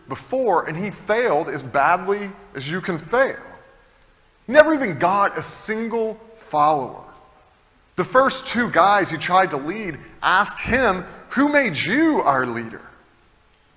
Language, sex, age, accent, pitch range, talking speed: English, male, 30-49, American, 145-200 Hz, 135 wpm